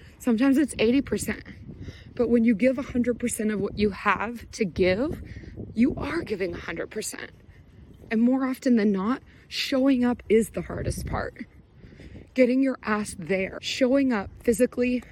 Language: English